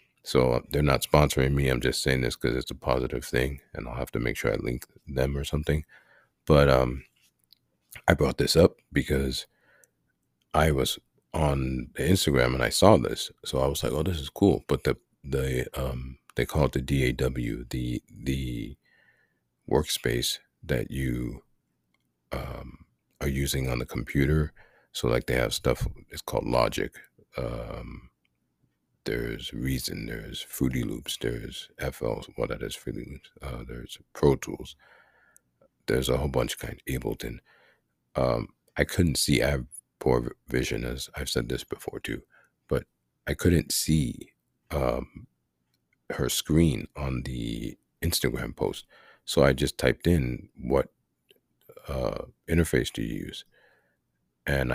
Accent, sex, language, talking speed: American, male, English, 150 wpm